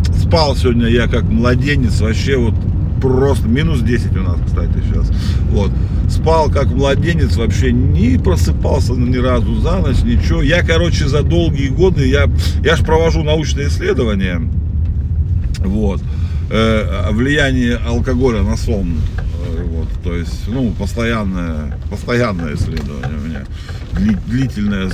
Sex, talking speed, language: male, 130 wpm, Russian